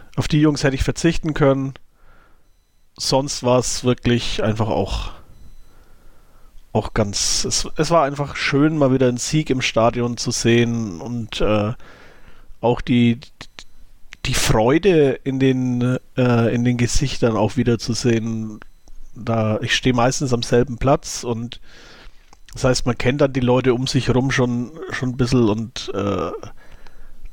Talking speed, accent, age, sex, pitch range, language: 145 wpm, German, 40-59, male, 110-130 Hz, German